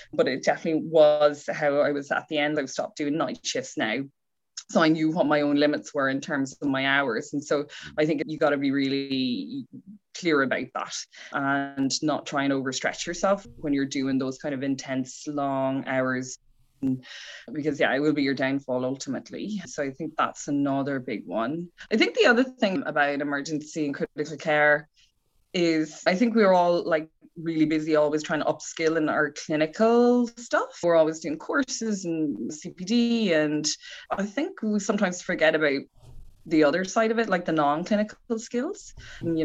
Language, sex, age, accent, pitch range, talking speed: English, female, 20-39, Irish, 145-170 Hz, 185 wpm